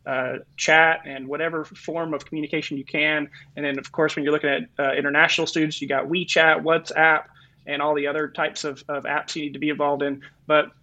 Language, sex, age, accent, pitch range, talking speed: English, male, 20-39, American, 145-165 Hz, 215 wpm